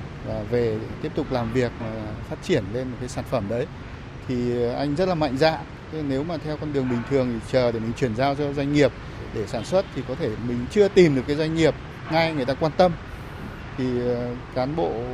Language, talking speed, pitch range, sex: Vietnamese, 220 wpm, 120-150 Hz, male